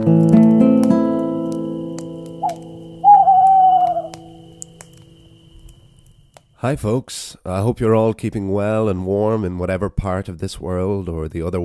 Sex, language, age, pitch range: male, English, 30-49, 90-115 Hz